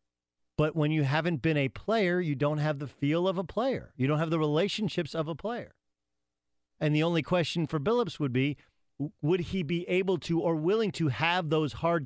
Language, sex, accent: English, male, American